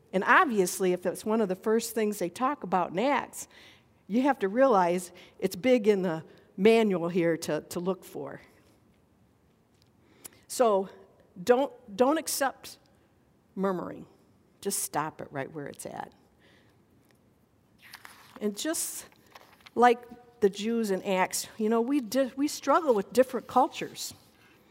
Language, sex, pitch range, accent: English, female, 180-245 Hz, American